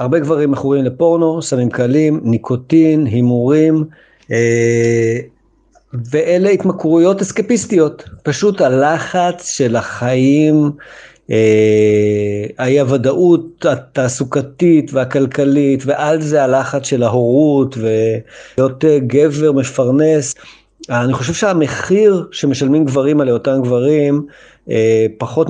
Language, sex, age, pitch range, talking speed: Hebrew, male, 50-69, 120-155 Hz, 90 wpm